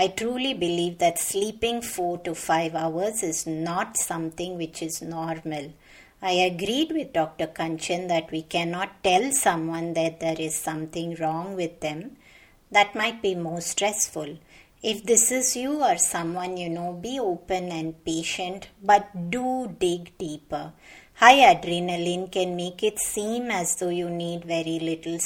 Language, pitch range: English, 165-210 Hz